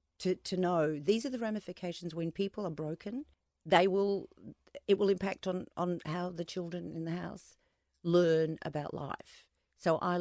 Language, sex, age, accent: English, female, 50-69, Australian